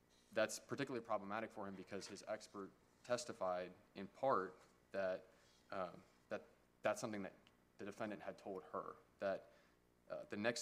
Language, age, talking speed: English, 20-39, 145 wpm